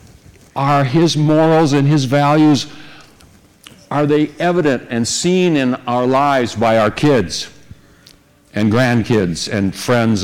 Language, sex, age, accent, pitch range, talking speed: English, male, 60-79, American, 100-130 Hz, 125 wpm